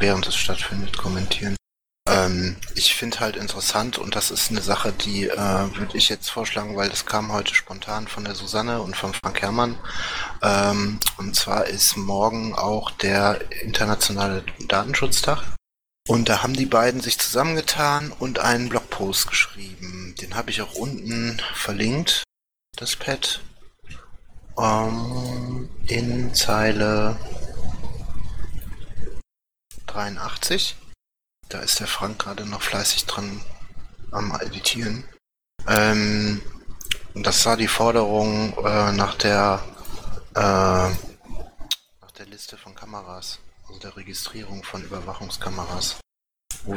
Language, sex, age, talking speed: German, male, 30-49, 120 wpm